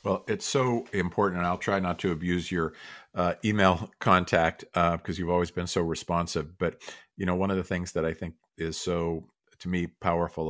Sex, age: male, 50-69